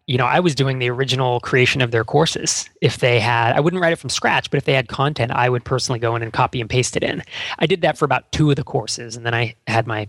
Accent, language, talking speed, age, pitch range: American, English, 295 wpm, 20-39, 120-145 Hz